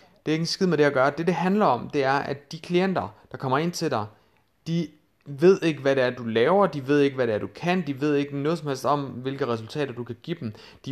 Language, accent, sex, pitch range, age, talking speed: Danish, native, male, 120-160 Hz, 30-49, 285 wpm